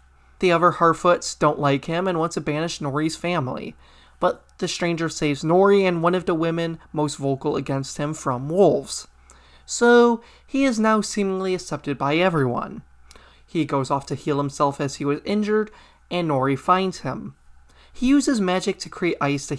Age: 20-39